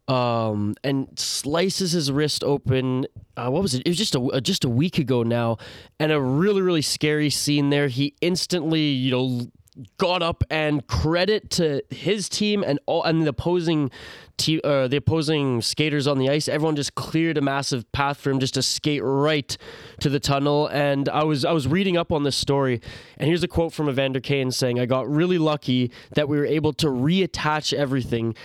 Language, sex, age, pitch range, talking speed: English, male, 20-39, 135-160 Hz, 195 wpm